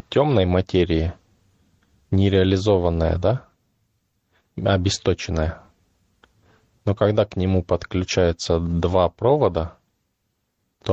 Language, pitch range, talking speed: Russian, 85-100 Hz, 70 wpm